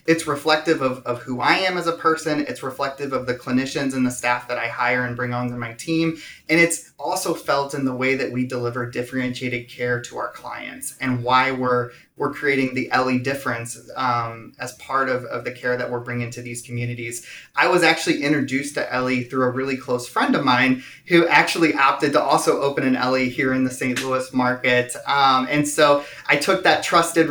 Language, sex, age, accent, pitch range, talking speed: English, male, 30-49, American, 125-160 Hz, 215 wpm